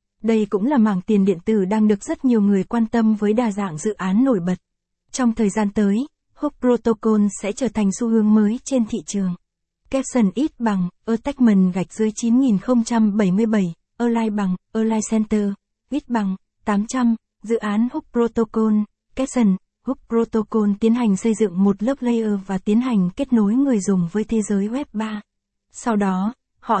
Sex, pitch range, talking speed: female, 200-235 Hz, 175 wpm